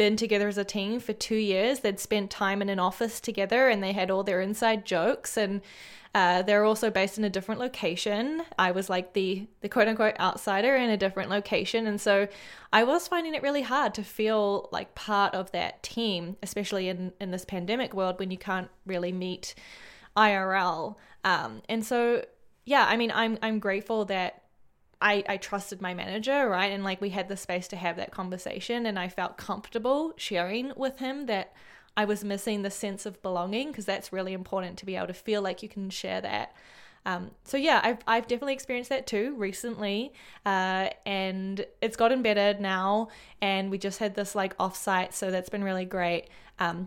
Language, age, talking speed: English, 10-29, 195 wpm